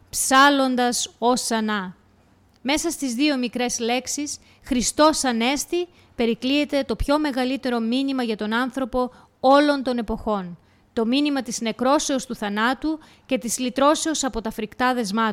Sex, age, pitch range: female, 20-39, 225-275 Hz